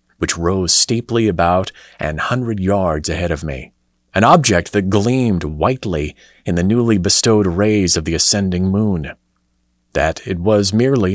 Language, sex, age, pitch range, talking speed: English, male, 40-59, 80-105 Hz, 150 wpm